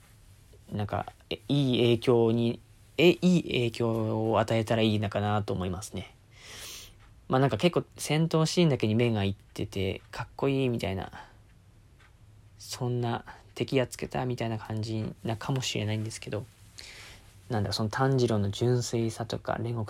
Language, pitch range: Japanese, 100-115 Hz